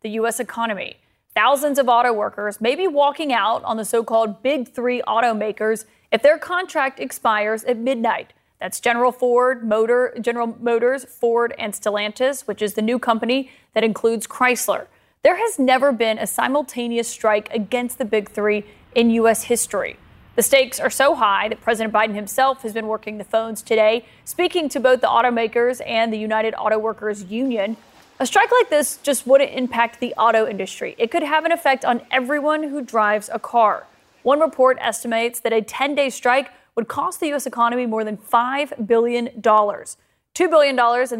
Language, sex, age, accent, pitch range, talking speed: English, female, 30-49, American, 220-265 Hz, 175 wpm